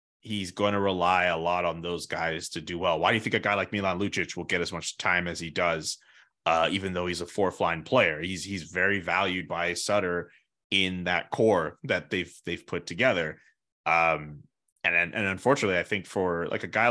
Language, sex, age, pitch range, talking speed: English, male, 20-39, 90-105 Hz, 220 wpm